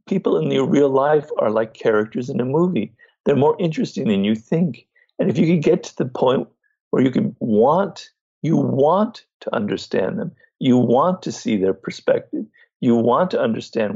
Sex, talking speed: male, 190 wpm